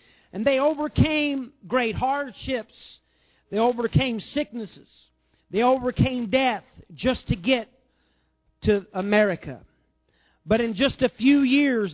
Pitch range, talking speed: 200-260 Hz, 110 wpm